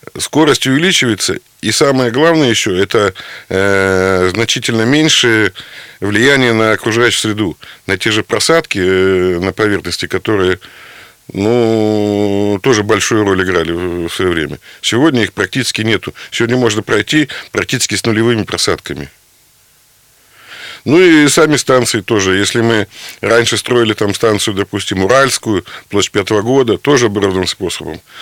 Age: 50-69